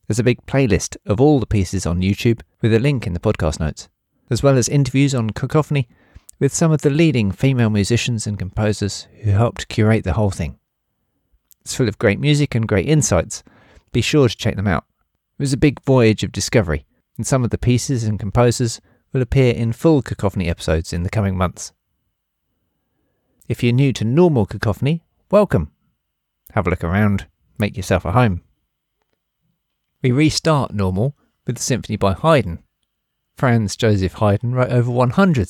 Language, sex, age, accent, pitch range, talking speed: English, male, 40-59, British, 100-135 Hz, 175 wpm